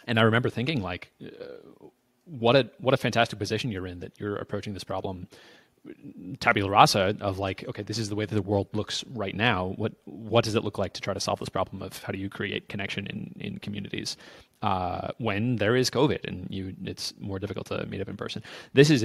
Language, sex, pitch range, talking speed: English, male, 100-125 Hz, 225 wpm